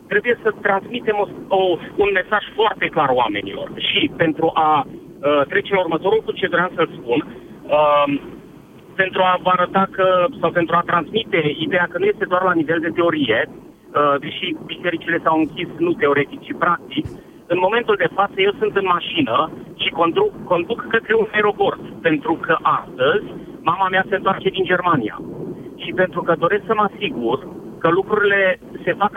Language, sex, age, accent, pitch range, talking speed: Romanian, male, 50-69, native, 165-210 Hz, 175 wpm